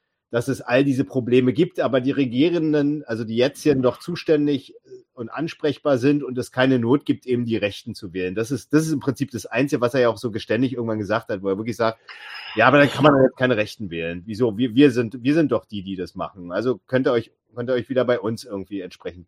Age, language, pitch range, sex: 40-59, German, 110-135 Hz, male